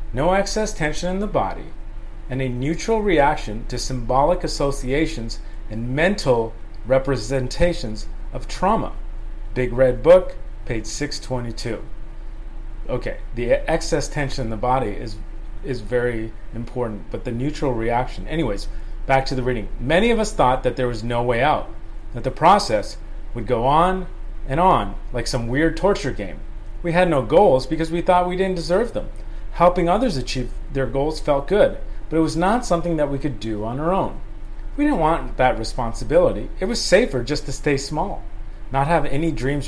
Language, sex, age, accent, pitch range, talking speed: English, male, 40-59, American, 110-145 Hz, 170 wpm